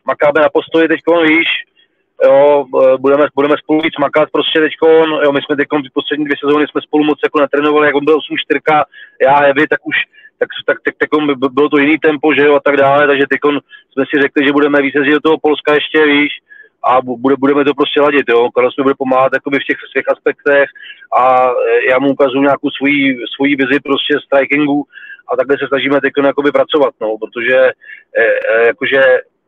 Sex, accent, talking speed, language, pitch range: male, native, 200 wpm, Czech, 135-155 Hz